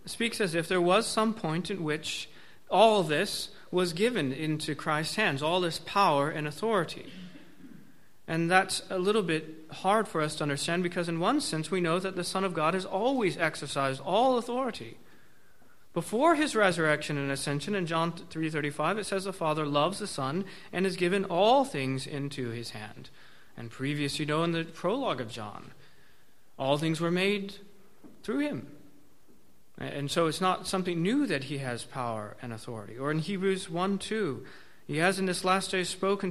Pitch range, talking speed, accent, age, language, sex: 150-200 Hz, 180 wpm, American, 30-49, English, male